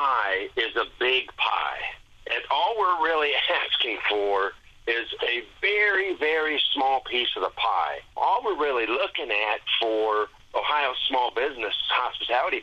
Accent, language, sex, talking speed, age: American, English, male, 145 wpm, 50-69